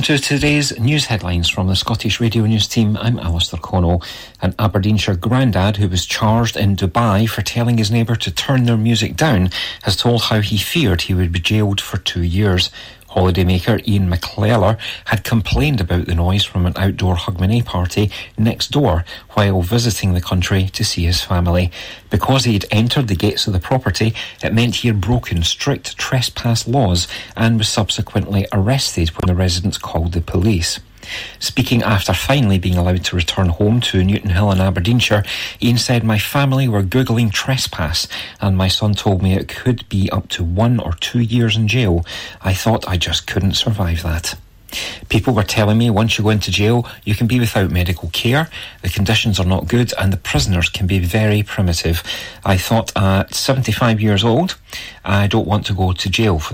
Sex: male